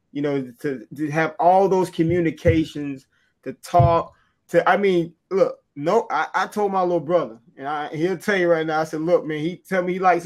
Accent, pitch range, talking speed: American, 160-195 Hz, 215 wpm